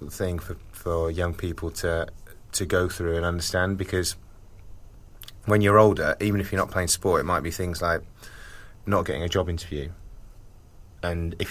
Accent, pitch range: British, 85-100 Hz